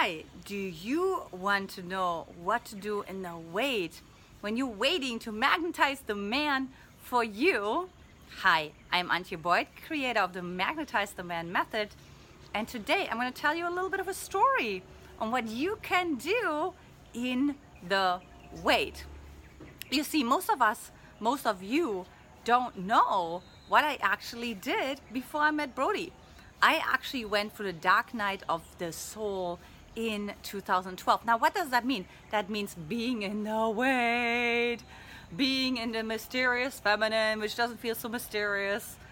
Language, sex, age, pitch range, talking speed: English, female, 30-49, 200-270 Hz, 160 wpm